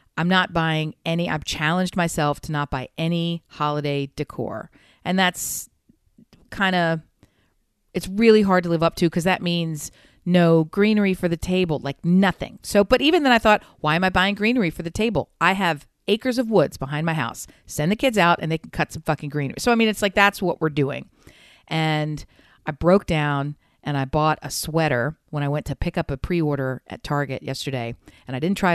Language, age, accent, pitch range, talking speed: English, 40-59, American, 150-190 Hz, 210 wpm